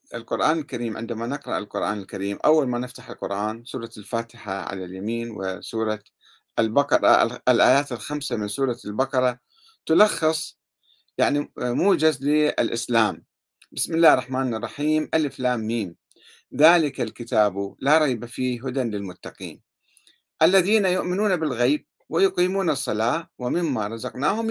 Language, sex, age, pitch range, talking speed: Arabic, male, 50-69, 115-160 Hz, 110 wpm